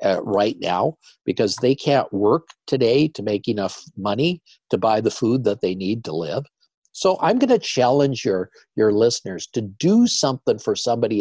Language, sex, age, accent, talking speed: English, male, 50-69, American, 180 wpm